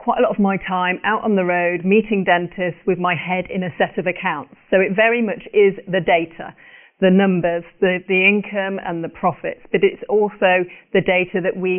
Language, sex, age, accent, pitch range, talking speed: English, female, 40-59, British, 175-195 Hz, 215 wpm